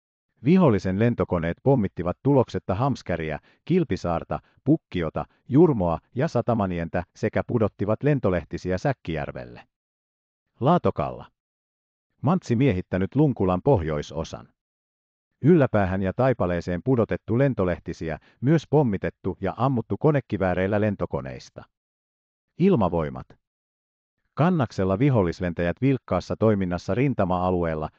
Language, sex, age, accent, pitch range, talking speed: Finnish, male, 50-69, native, 85-125 Hz, 75 wpm